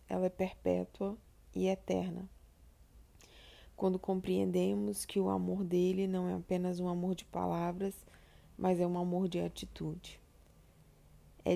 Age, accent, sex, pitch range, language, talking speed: 20-39, Brazilian, female, 165-195 Hz, Portuguese, 130 wpm